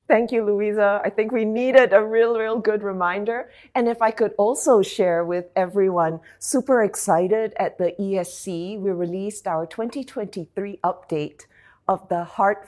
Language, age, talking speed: English, 40-59, 155 wpm